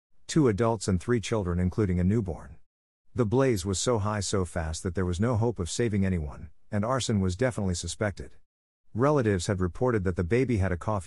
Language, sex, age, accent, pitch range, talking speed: English, male, 50-69, American, 90-115 Hz, 200 wpm